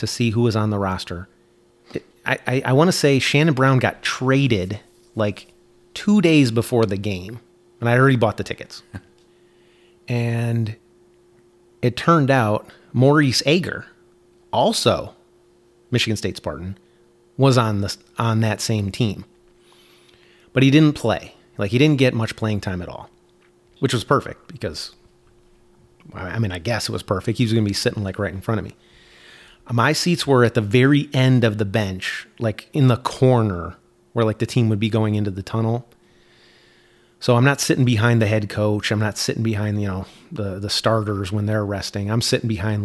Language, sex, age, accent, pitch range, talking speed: English, male, 30-49, American, 105-130 Hz, 180 wpm